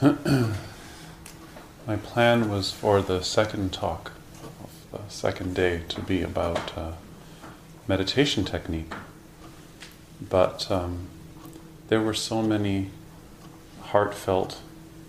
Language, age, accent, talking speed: English, 30-49, American, 95 wpm